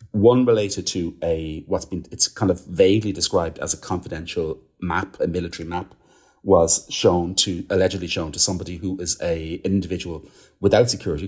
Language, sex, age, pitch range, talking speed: English, male, 40-59, 85-105 Hz, 165 wpm